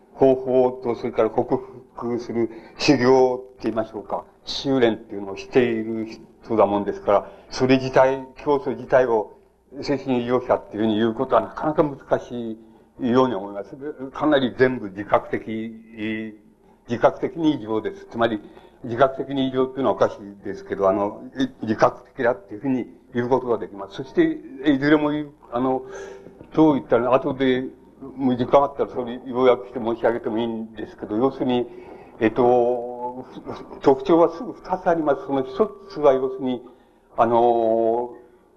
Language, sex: Japanese, male